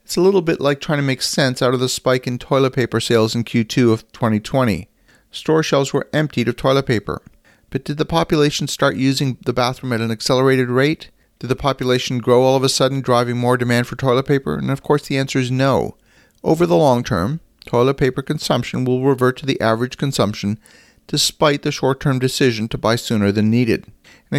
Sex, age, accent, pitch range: male, 40-59, American, 115-135 Hz